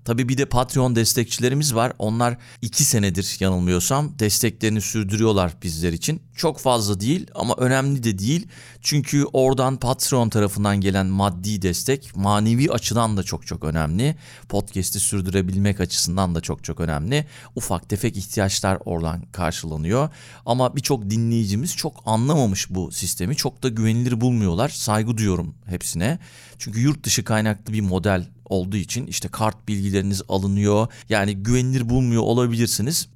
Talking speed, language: 140 wpm, Turkish